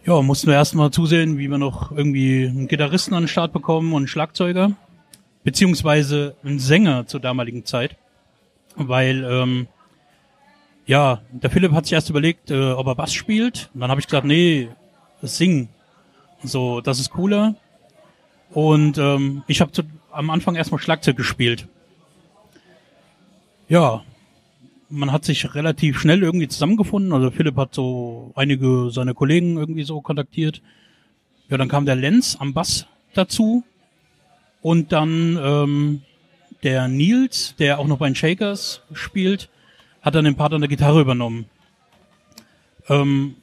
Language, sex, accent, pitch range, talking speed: German, male, German, 135-165 Hz, 145 wpm